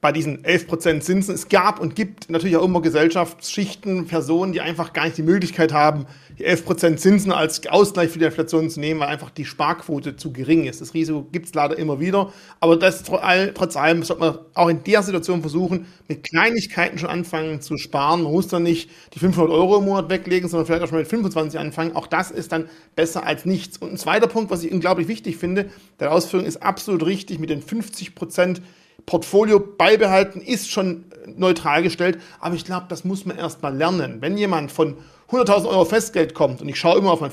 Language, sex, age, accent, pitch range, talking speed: German, male, 40-59, German, 160-195 Hz, 210 wpm